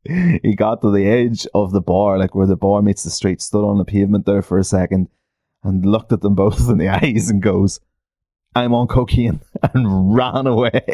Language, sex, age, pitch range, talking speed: English, male, 20-39, 100-125 Hz, 215 wpm